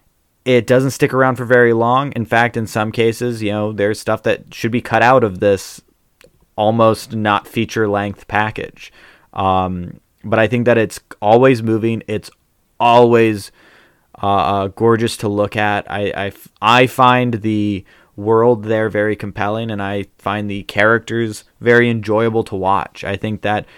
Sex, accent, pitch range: male, American, 95-115 Hz